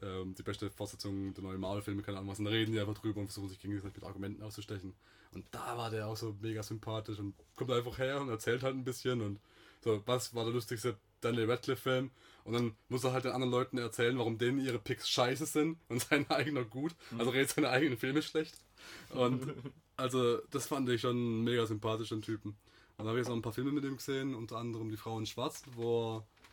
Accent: German